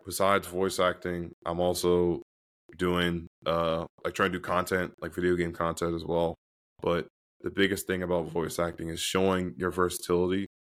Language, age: English, 20-39